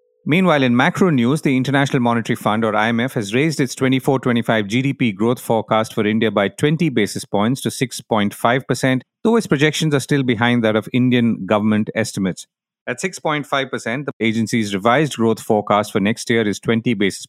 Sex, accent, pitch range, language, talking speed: male, Indian, 110-135 Hz, English, 170 wpm